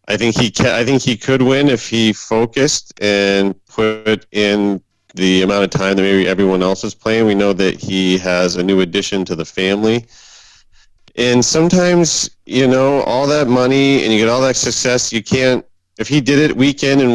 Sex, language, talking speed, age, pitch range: male, English, 205 wpm, 30-49, 95-120 Hz